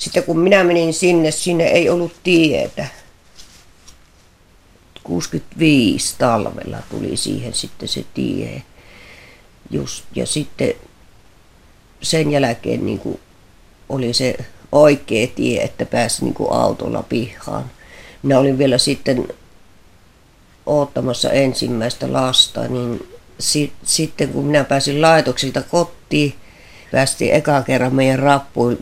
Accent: native